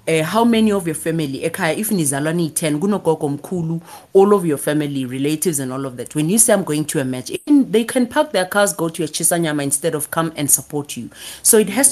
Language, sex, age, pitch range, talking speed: English, female, 30-49, 155-210 Hz, 205 wpm